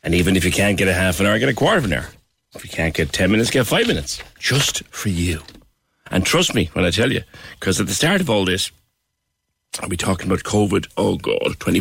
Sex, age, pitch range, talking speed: male, 60-79, 95-130 Hz, 255 wpm